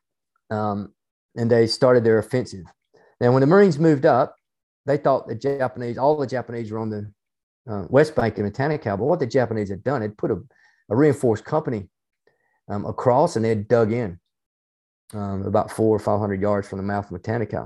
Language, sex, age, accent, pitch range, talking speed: English, male, 40-59, American, 105-125 Hz, 195 wpm